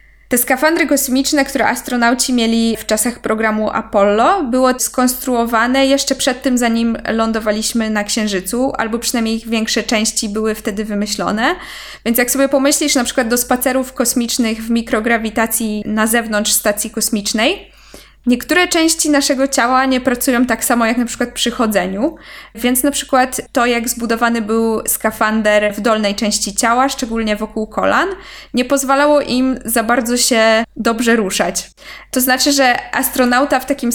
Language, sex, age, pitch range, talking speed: Polish, female, 20-39, 225-260 Hz, 150 wpm